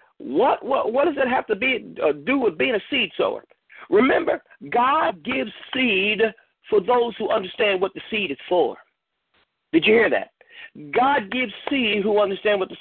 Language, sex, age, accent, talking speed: English, male, 50-69, American, 185 wpm